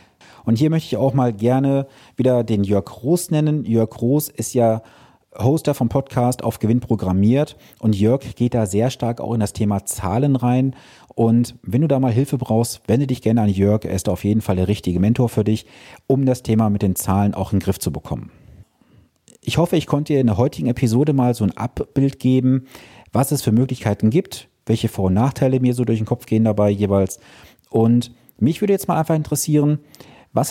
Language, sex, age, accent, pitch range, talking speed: German, male, 40-59, German, 105-135 Hz, 210 wpm